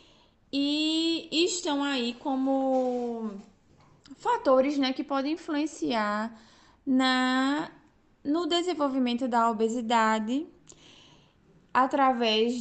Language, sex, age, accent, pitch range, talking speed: Portuguese, female, 10-29, Brazilian, 230-295 Hz, 65 wpm